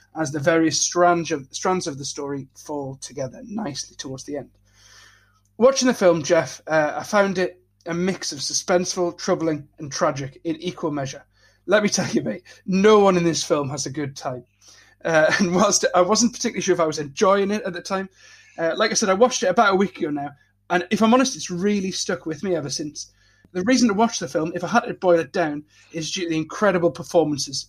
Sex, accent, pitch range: male, British, 145-180 Hz